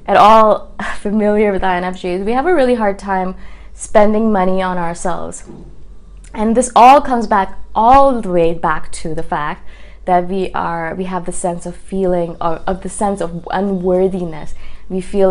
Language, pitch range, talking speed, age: English, 180-225 Hz, 165 wpm, 20-39